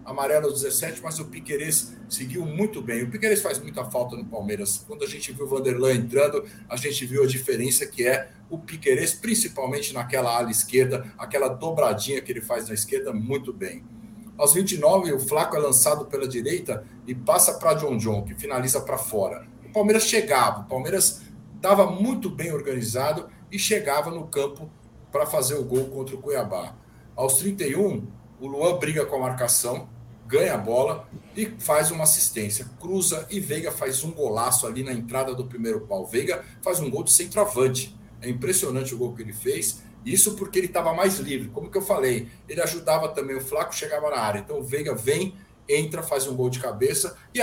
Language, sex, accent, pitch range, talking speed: Portuguese, male, Brazilian, 125-185 Hz, 190 wpm